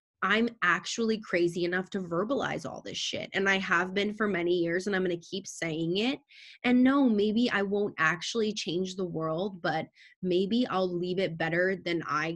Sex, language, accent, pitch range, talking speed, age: female, English, American, 175-215 Hz, 195 wpm, 20-39